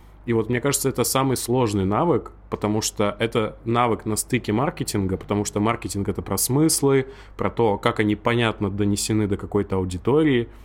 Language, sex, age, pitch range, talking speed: Russian, male, 20-39, 100-120 Hz, 170 wpm